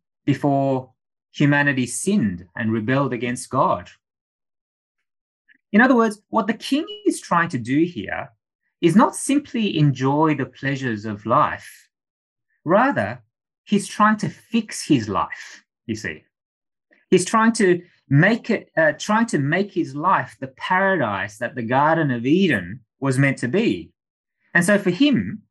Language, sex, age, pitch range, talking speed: English, male, 20-39, 130-210 Hz, 145 wpm